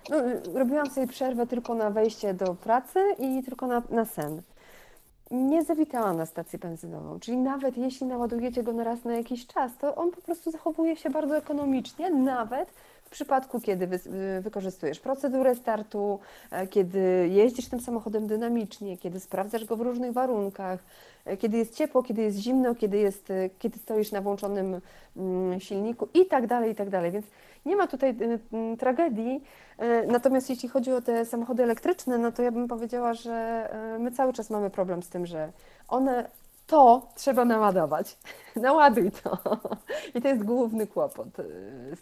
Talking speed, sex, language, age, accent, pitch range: 160 wpm, female, Polish, 30-49, native, 195-255 Hz